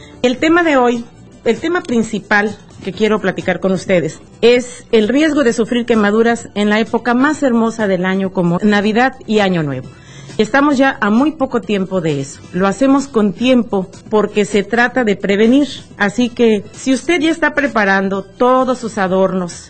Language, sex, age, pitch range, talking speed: English, female, 40-59, 195-250 Hz, 175 wpm